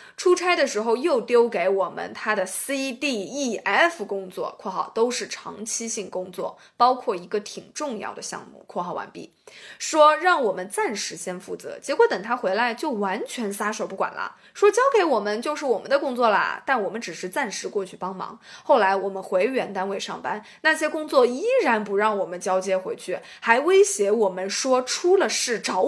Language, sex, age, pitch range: Chinese, female, 20-39, 195-320 Hz